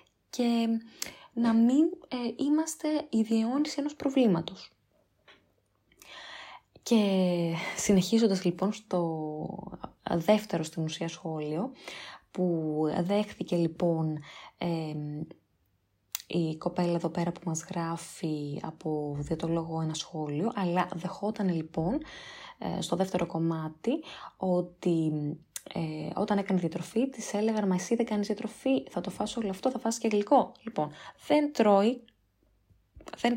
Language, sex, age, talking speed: Greek, female, 20-39, 120 wpm